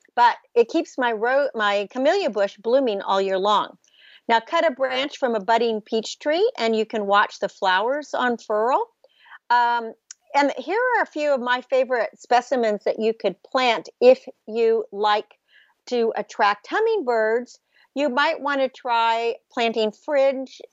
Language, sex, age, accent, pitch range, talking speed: English, female, 50-69, American, 215-280 Hz, 160 wpm